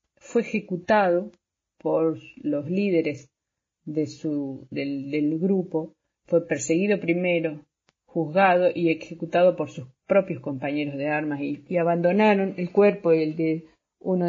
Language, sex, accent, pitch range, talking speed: Spanish, female, Argentinian, 155-185 Hz, 125 wpm